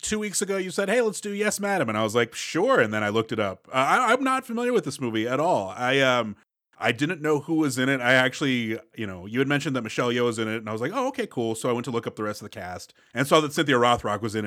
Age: 30-49